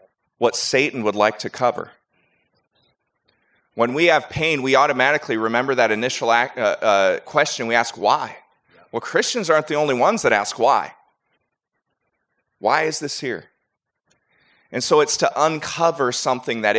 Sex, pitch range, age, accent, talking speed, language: male, 140-195 Hz, 30-49, American, 150 wpm, English